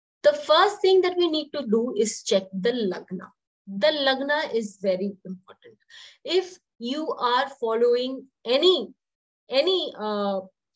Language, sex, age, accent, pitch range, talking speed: English, female, 20-39, Indian, 205-295 Hz, 135 wpm